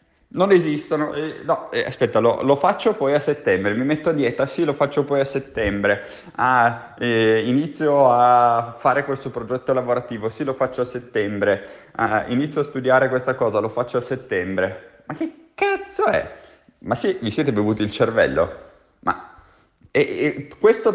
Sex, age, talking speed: male, 20-39, 160 wpm